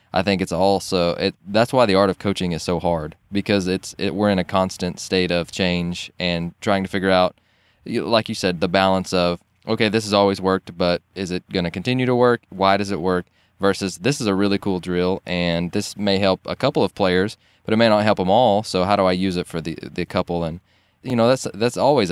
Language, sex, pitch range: English, male, 90-105 Hz